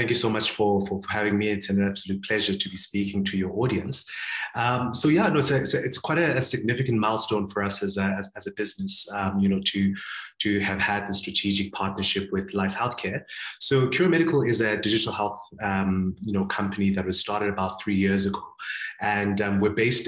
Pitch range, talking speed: 100-115 Hz, 225 wpm